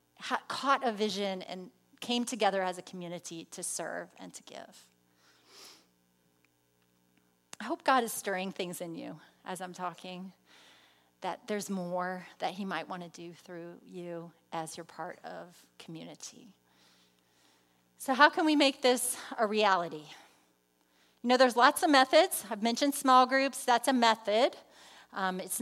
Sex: female